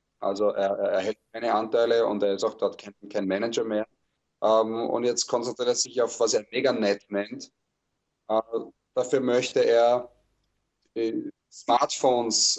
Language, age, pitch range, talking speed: German, 30-49, 105-135 Hz, 155 wpm